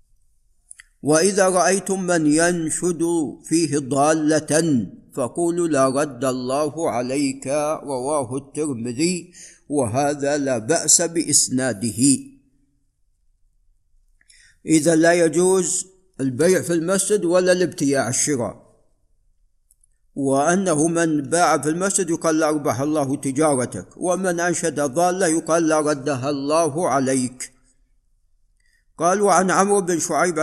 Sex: male